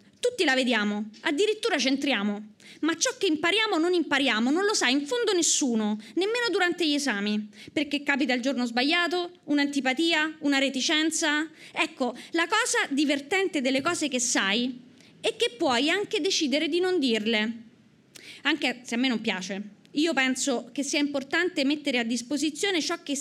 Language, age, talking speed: Italian, 20-39, 160 wpm